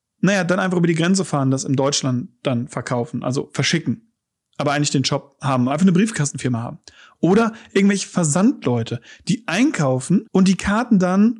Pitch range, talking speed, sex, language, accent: 130-190 Hz, 170 wpm, male, German, German